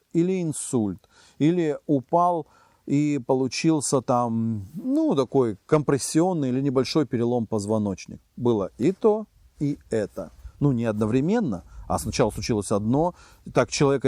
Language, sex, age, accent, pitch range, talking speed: Russian, male, 40-59, native, 115-155 Hz, 120 wpm